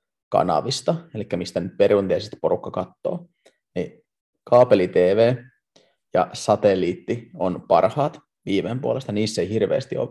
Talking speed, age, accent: 105 wpm, 20-39, native